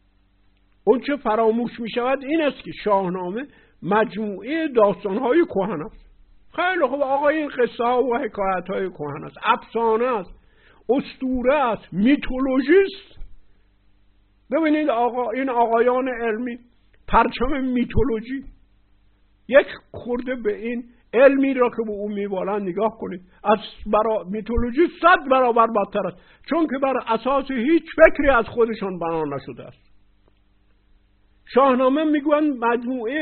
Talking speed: 125 wpm